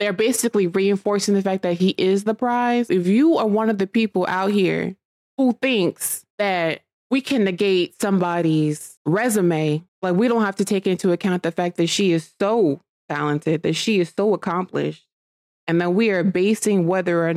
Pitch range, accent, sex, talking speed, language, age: 170-210 Hz, American, female, 185 wpm, English, 20-39